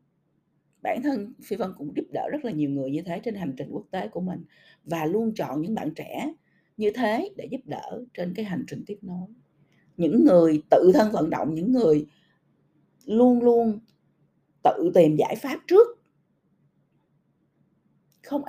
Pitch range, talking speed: 160-250 Hz, 170 wpm